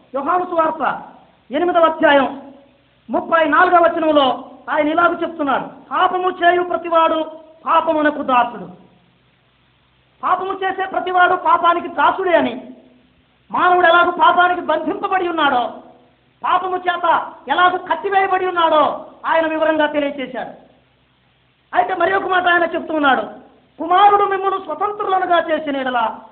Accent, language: native, Telugu